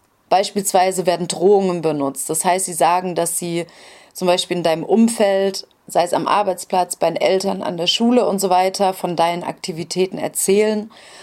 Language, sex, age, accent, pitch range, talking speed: German, female, 30-49, German, 170-200 Hz, 170 wpm